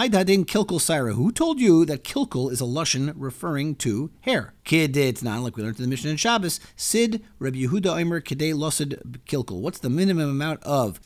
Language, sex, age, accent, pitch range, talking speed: English, male, 40-59, American, 125-165 Hz, 145 wpm